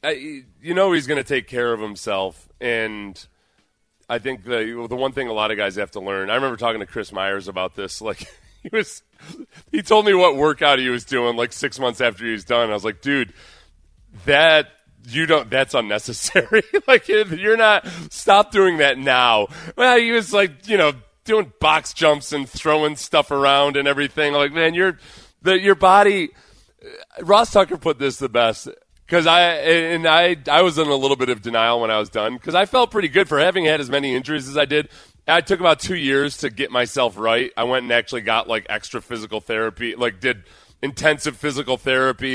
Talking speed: 205 wpm